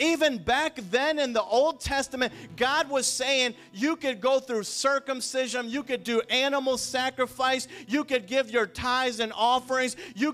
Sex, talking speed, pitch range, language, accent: male, 165 wpm, 255-285 Hz, English, American